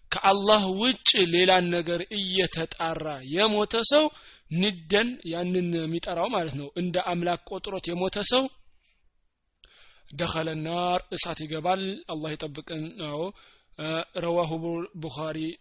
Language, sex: Amharic, male